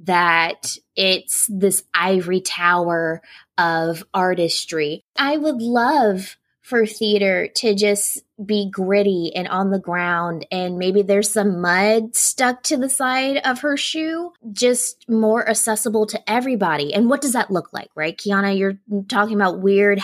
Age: 20-39